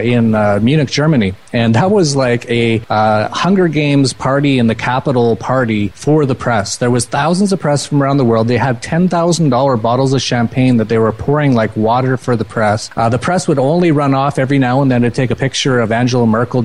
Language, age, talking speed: English, 30-49, 225 wpm